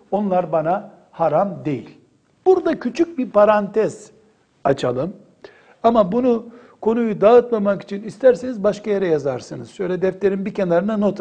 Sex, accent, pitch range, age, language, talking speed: male, native, 140-215 Hz, 60-79, Turkish, 125 wpm